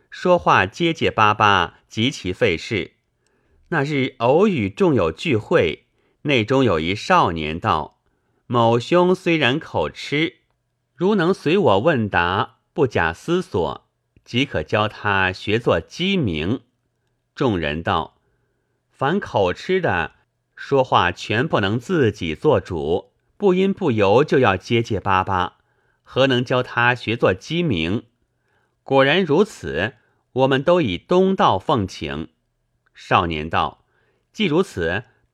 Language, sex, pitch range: Chinese, male, 105-160 Hz